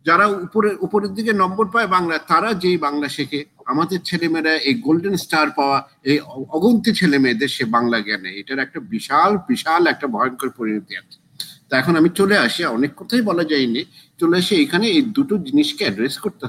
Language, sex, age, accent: Bengali, male, 50-69, native